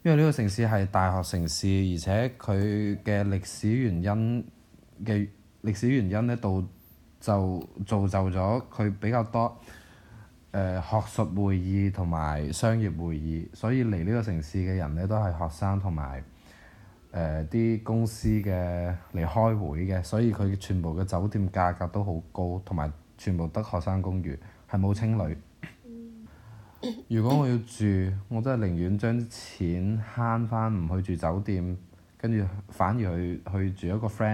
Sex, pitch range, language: male, 90-115 Hz, Chinese